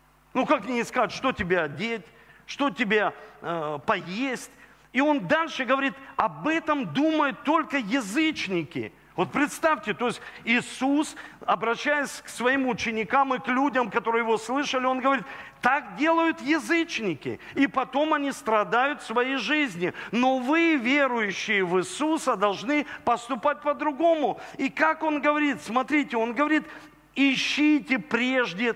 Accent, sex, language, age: native, male, Russian, 40-59